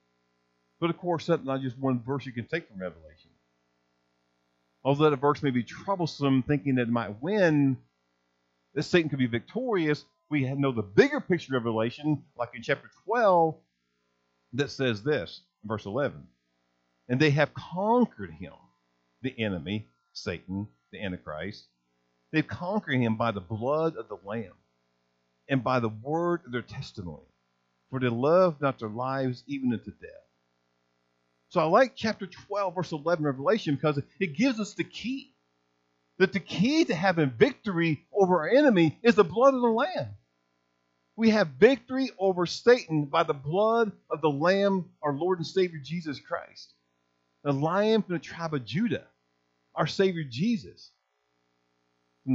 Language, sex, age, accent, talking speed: English, male, 50-69, American, 155 wpm